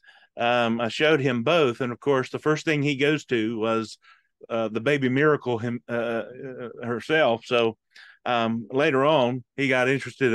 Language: English